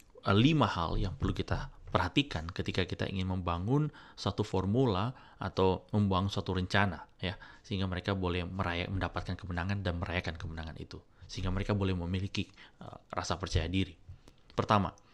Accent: native